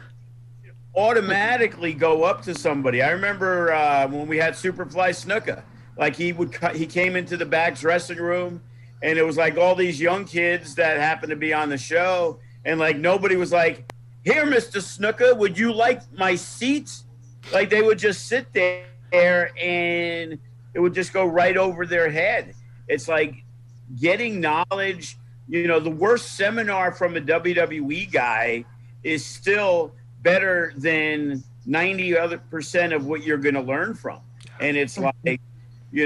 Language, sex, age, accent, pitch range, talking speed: English, male, 50-69, American, 125-180 Hz, 160 wpm